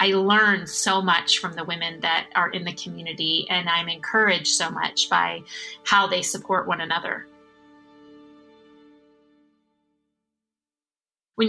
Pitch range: 175-210 Hz